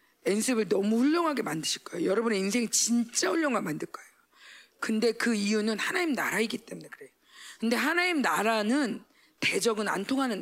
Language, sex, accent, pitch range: Korean, female, native, 240-340 Hz